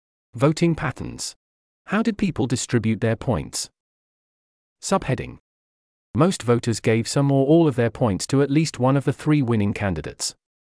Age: 40-59